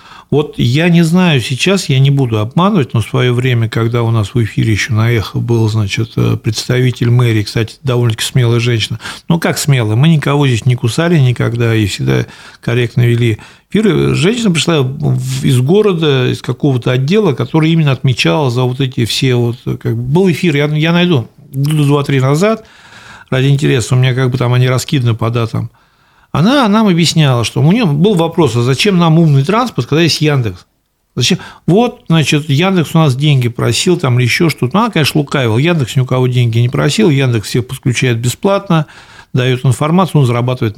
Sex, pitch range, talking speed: male, 120-165 Hz, 180 wpm